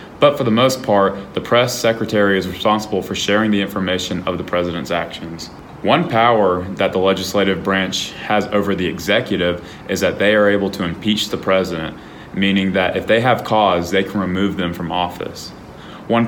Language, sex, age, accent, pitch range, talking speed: English, male, 20-39, American, 90-105 Hz, 185 wpm